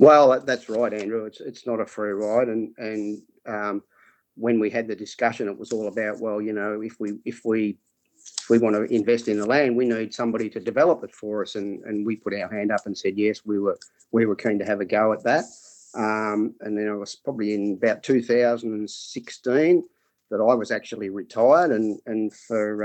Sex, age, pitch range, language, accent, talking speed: male, 40-59, 105-115 Hz, English, Australian, 225 wpm